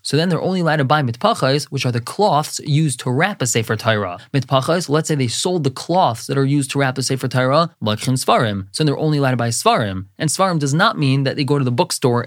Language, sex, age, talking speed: English, male, 20-39, 270 wpm